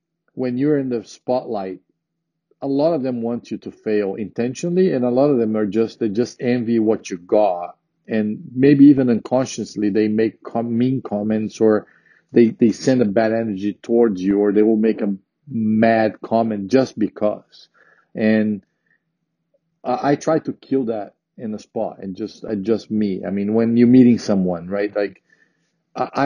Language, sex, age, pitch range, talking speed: English, male, 50-69, 110-145 Hz, 175 wpm